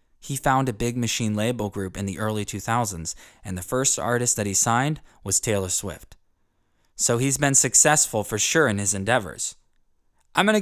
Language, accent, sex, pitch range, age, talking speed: English, American, male, 105-150 Hz, 20-39, 180 wpm